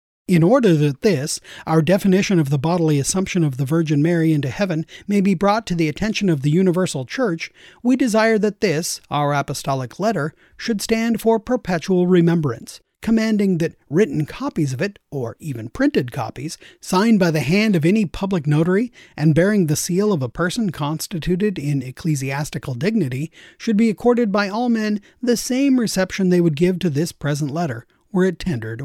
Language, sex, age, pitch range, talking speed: English, male, 30-49, 150-210 Hz, 180 wpm